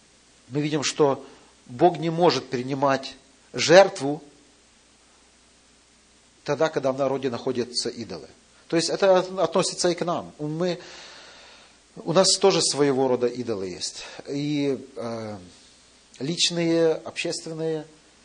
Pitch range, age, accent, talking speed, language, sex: 135-165 Hz, 40-59, native, 100 wpm, Russian, male